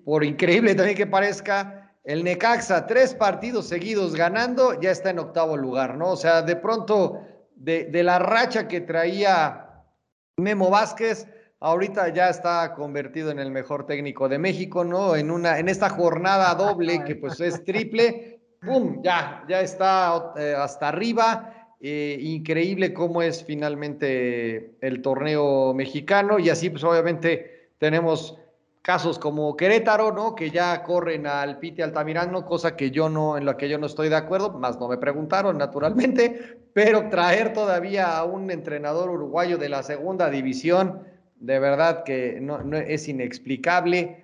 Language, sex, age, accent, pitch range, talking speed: Spanish, male, 40-59, Mexican, 150-190 Hz, 155 wpm